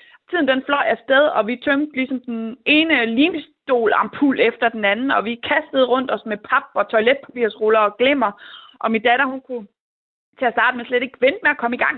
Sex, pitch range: female, 215-275 Hz